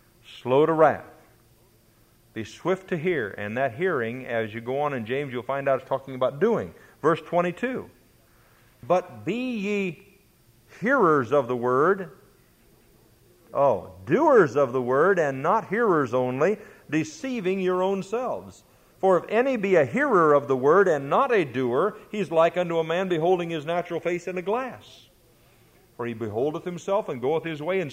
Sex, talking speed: male, 170 wpm